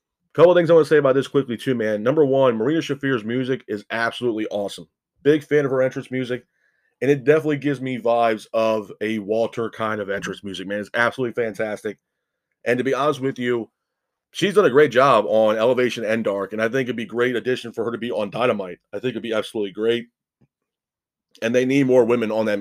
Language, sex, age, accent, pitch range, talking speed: English, male, 30-49, American, 110-135 Hz, 225 wpm